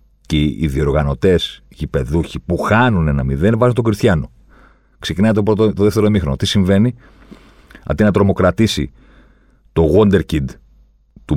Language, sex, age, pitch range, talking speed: Greek, male, 40-59, 65-95 Hz, 125 wpm